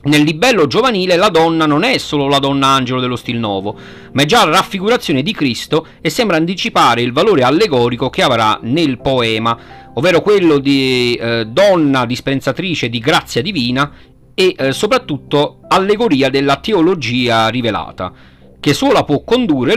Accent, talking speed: native, 155 wpm